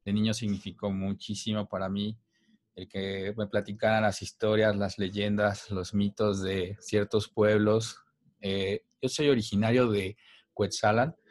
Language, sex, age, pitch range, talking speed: Spanish, male, 30-49, 95-110 Hz, 135 wpm